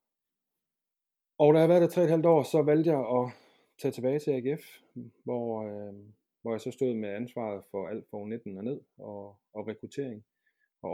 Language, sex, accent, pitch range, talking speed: Danish, male, native, 105-120 Hz, 185 wpm